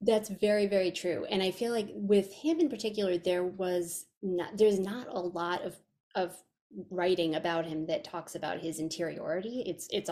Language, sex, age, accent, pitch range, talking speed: English, female, 30-49, American, 165-205 Hz, 185 wpm